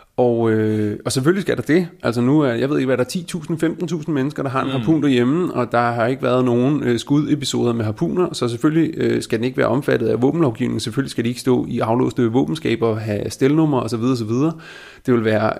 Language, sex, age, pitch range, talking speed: Danish, male, 30-49, 115-140 Hz, 225 wpm